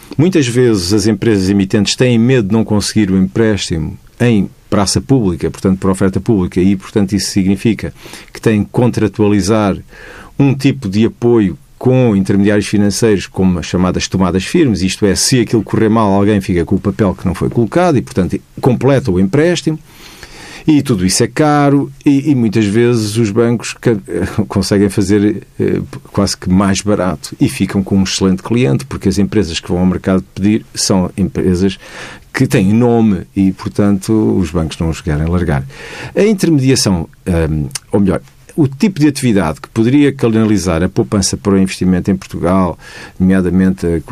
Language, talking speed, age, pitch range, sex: Portuguese, 165 wpm, 50-69, 95-120 Hz, male